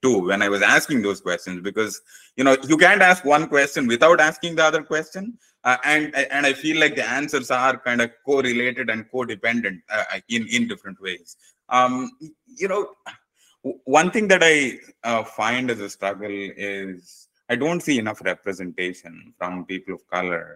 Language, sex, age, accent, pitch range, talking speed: English, male, 20-39, Indian, 105-155 Hz, 180 wpm